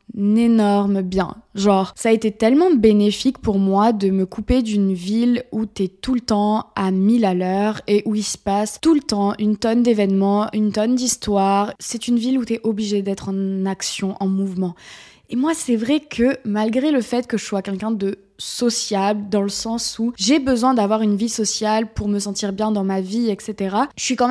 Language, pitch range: French, 200-240 Hz